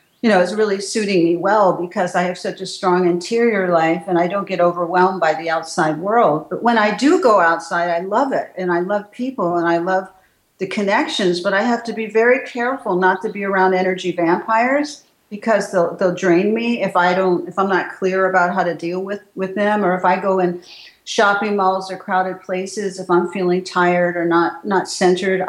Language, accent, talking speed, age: English, American, 215 wpm, 50-69